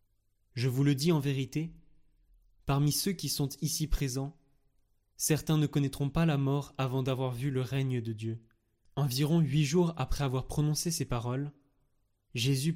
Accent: French